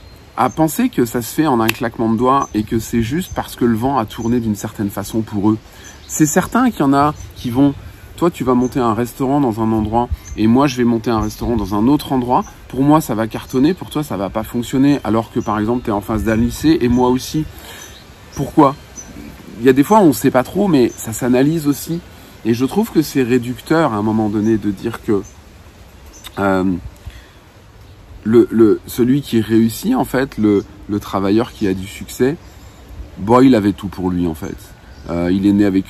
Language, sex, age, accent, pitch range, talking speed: French, male, 40-59, French, 100-125 Hz, 220 wpm